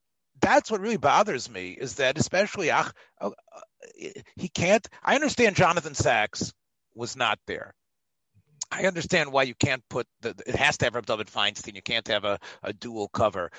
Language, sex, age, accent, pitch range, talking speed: English, male, 40-59, American, 115-195 Hz, 175 wpm